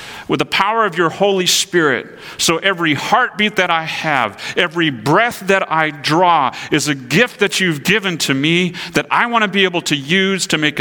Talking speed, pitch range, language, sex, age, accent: 200 wpm, 120-165 Hz, English, male, 40-59, American